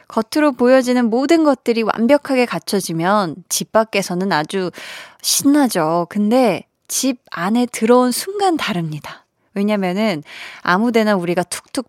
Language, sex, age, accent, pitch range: Korean, female, 20-39, native, 180-250 Hz